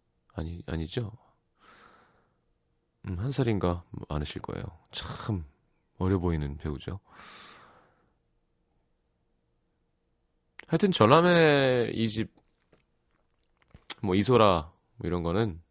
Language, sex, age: Korean, male, 30-49